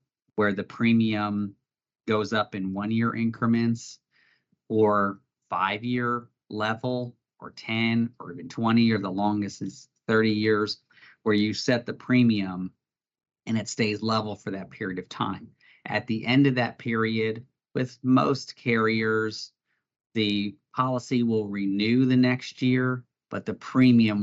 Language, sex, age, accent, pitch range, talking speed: English, male, 40-59, American, 100-120 Hz, 140 wpm